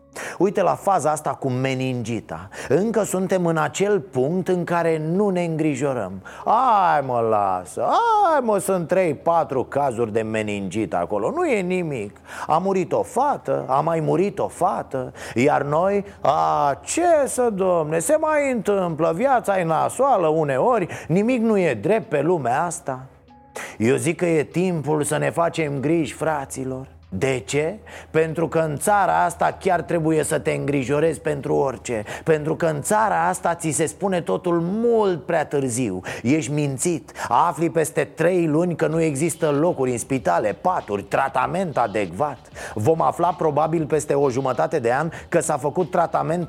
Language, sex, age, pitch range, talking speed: Romanian, male, 30-49, 140-180 Hz, 155 wpm